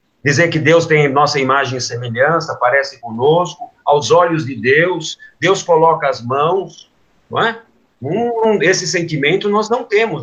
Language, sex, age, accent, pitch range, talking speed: Portuguese, male, 50-69, Brazilian, 145-195 Hz, 145 wpm